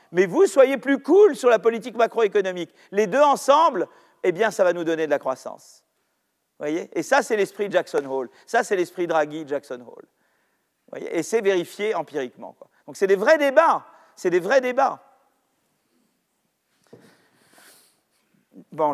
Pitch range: 185-305 Hz